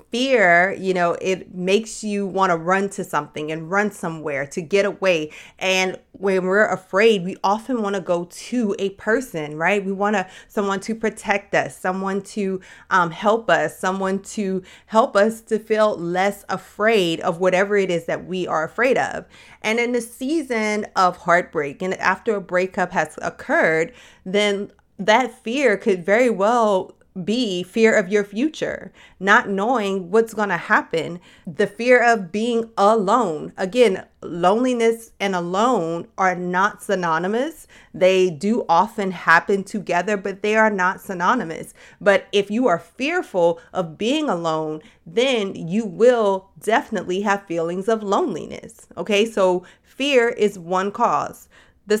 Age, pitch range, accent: 30-49, 185-220 Hz, American